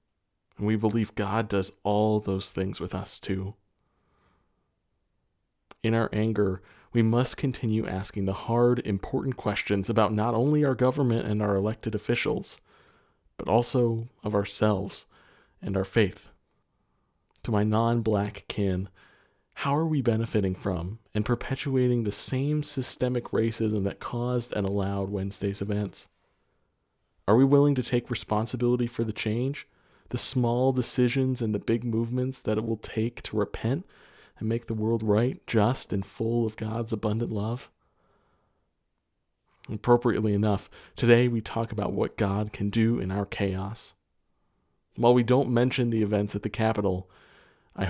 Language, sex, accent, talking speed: English, male, American, 145 wpm